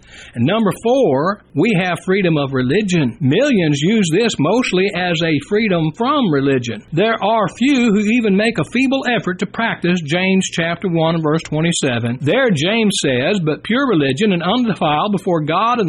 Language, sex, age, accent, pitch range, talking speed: English, male, 60-79, American, 165-225 Hz, 165 wpm